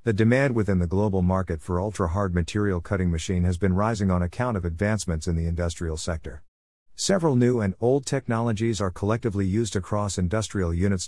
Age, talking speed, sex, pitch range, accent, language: 50-69, 180 wpm, male, 90-110 Hz, American, English